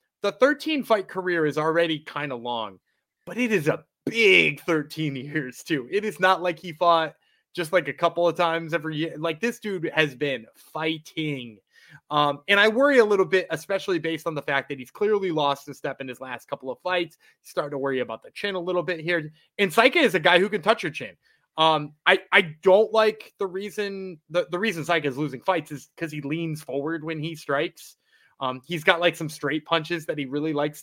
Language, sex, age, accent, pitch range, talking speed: English, male, 20-39, American, 145-190 Hz, 220 wpm